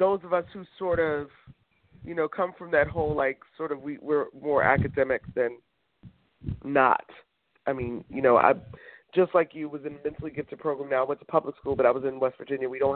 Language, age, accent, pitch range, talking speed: English, 40-59, American, 135-155 Hz, 225 wpm